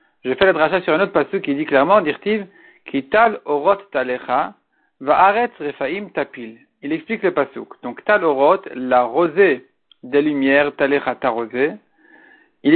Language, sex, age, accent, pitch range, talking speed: French, male, 50-69, French, 145-200 Hz, 150 wpm